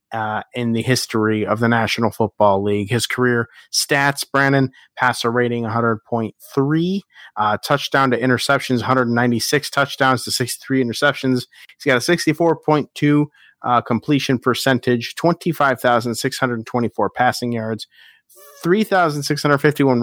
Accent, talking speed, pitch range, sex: American, 120 wpm, 115-140 Hz, male